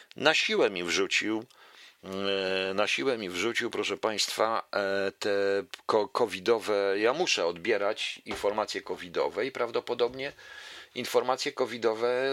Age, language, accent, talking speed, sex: 40-59, Polish, native, 90 wpm, male